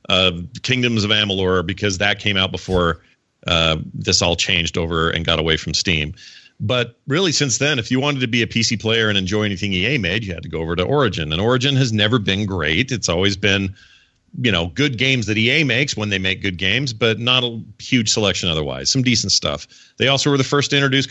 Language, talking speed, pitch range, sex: English, 225 wpm, 95-125 Hz, male